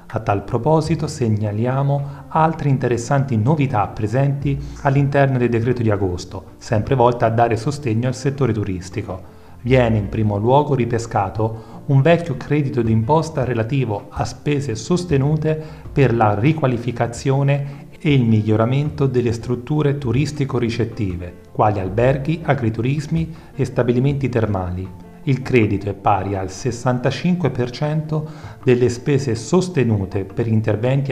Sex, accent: male, native